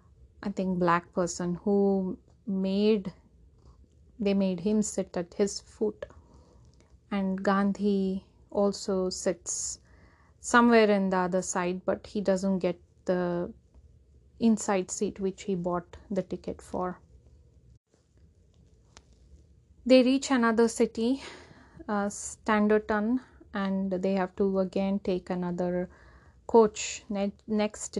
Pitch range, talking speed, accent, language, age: 175-205 Hz, 105 wpm, Indian, English, 30-49